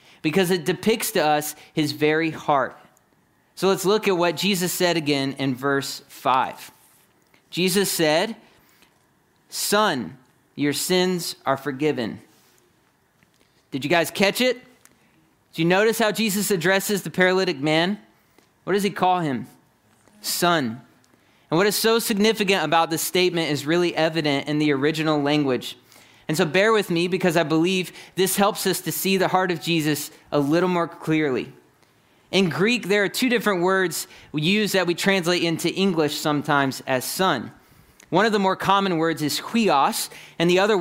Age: 30-49